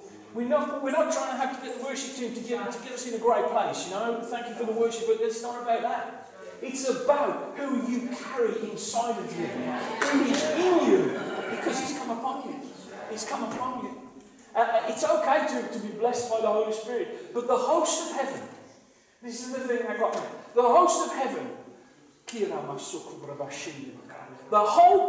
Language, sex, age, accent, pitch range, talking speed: English, male, 40-59, British, 195-275 Hz, 190 wpm